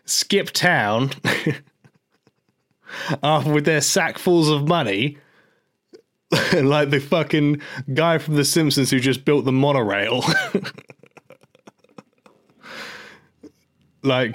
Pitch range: 120-150 Hz